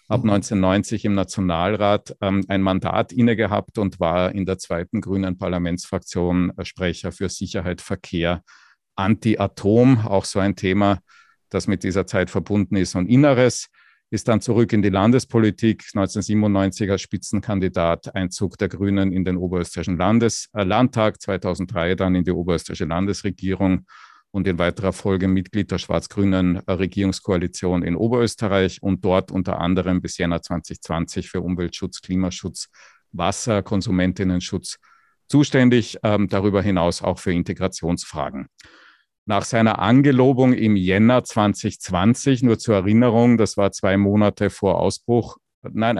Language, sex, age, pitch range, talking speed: English, male, 50-69, 90-105 Hz, 135 wpm